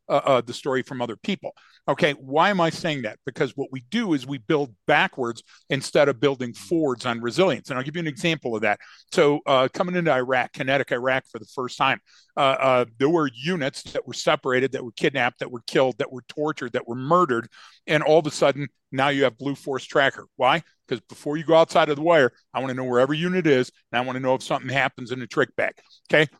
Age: 50-69